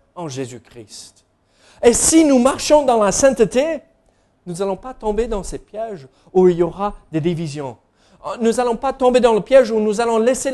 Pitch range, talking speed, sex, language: 150-225 Hz, 190 wpm, male, French